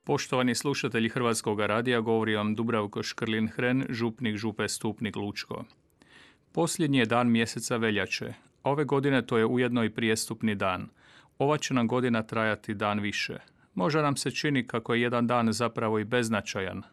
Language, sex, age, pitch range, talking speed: Croatian, male, 40-59, 110-135 Hz, 155 wpm